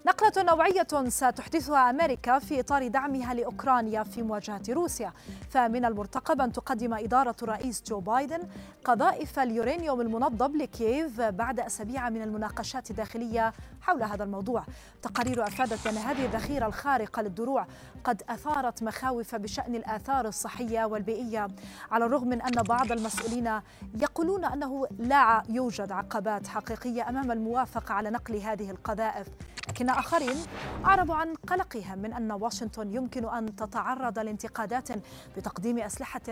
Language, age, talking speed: Arabic, 30-49, 125 wpm